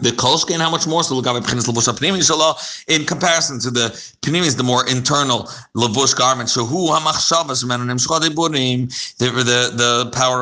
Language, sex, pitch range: English, male, 125-160 Hz